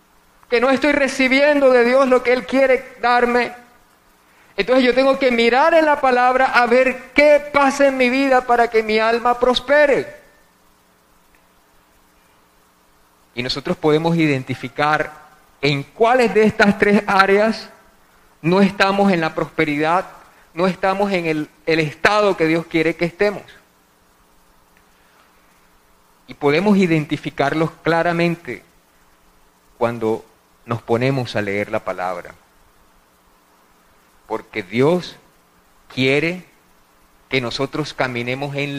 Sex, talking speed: male, 115 wpm